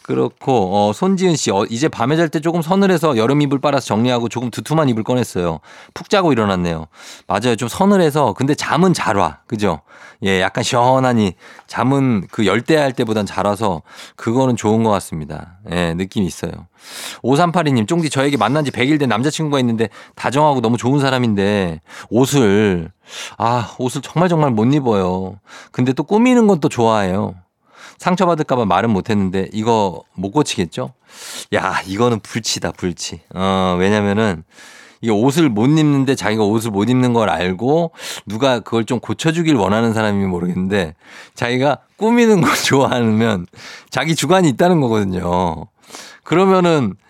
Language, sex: Korean, male